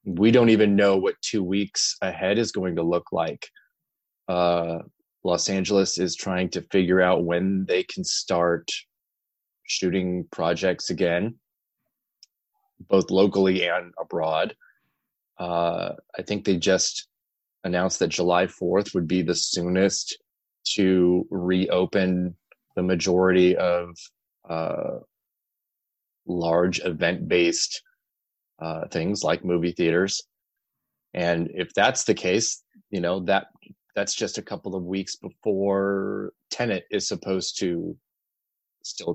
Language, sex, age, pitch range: English, male, 20-39, 90-110 Hz